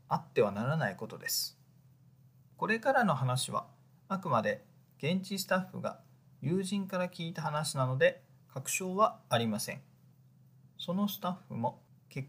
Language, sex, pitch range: Japanese, male, 130-165 Hz